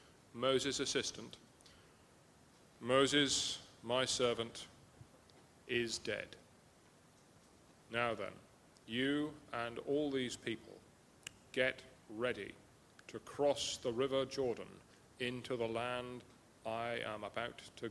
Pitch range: 115-135 Hz